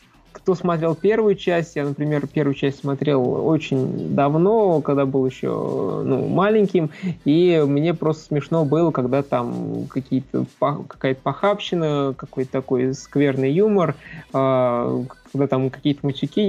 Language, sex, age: Russian, male, 20-39